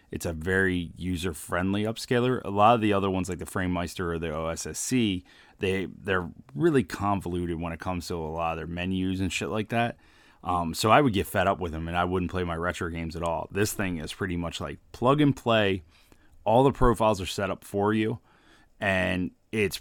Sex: male